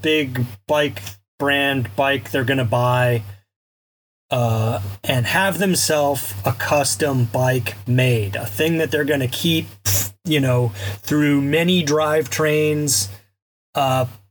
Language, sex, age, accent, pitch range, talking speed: English, male, 30-49, American, 115-165 Hz, 125 wpm